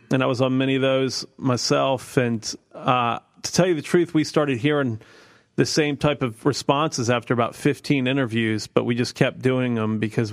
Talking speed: 200 wpm